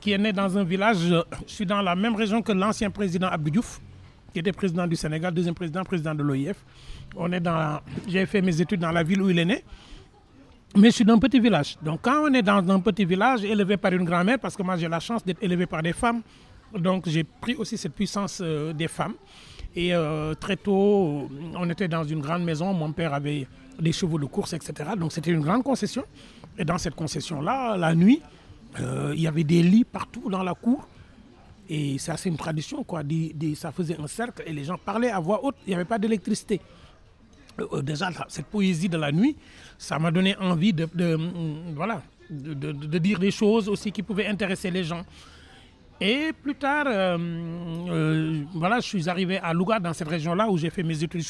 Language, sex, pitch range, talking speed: French, male, 160-205 Hz, 205 wpm